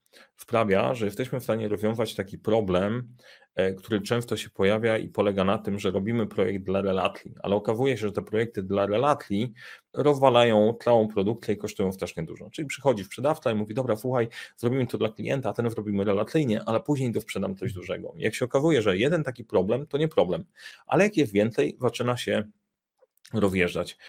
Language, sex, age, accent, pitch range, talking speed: Polish, male, 30-49, native, 100-125 Hz, 185 wpm